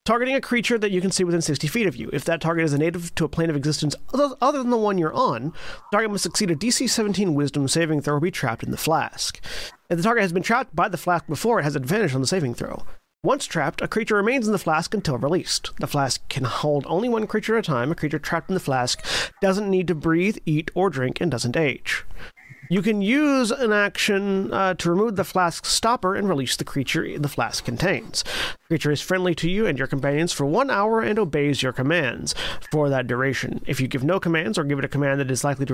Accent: American